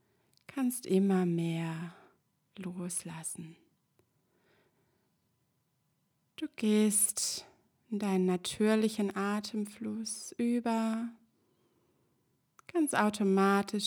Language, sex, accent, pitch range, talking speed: German, female, German, 190-220 Hz, 55 wpm